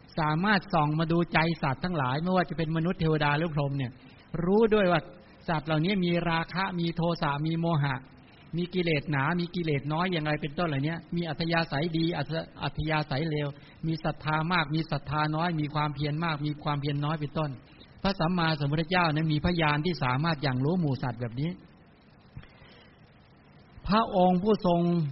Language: English